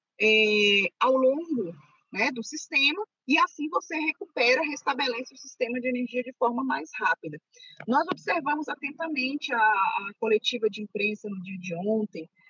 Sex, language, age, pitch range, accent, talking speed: female, Portuguese, 20-39, 220-295 Hz, Brazilian, 145 wpm